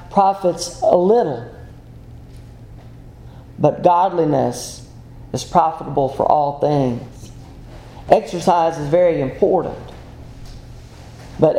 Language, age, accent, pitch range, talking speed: English, 40-59, American, 130-185 Hz, 80 wpm